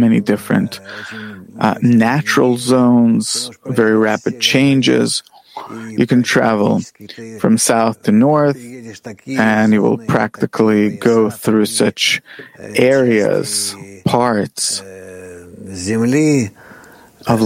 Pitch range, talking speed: 110-130 Hz, 85 wpm